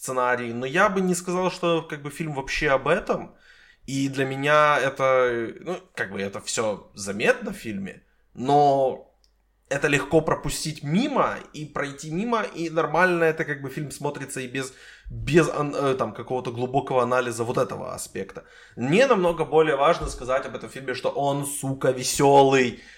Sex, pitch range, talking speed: male, 125-155 Hz, 160 wpm